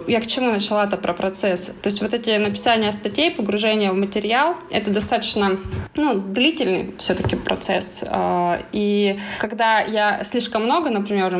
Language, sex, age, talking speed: Russian, female, 20-39, 155 wpm